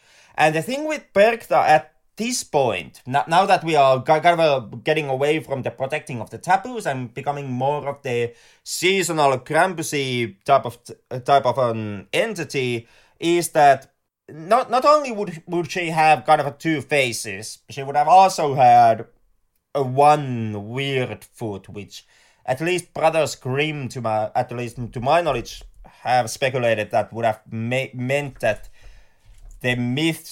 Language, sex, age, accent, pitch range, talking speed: English, male, 30-49, Finnish, 120-165 Hz, 155 wpm